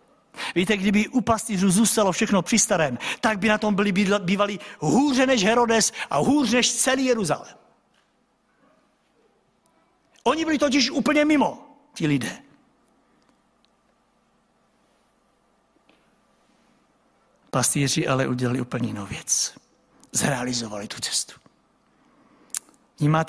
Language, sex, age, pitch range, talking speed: Czech, male, 60-79, 130-195 Hz, 100 wpm